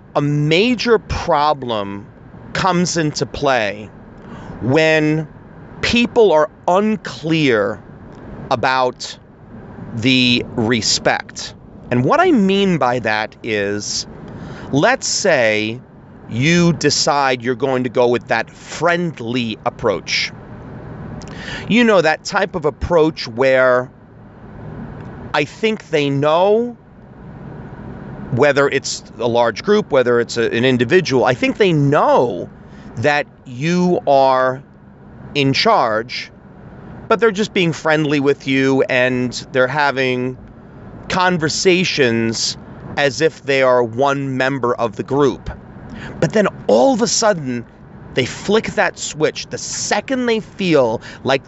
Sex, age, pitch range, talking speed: male, 40-59, 125-175 Hz, 110 wpm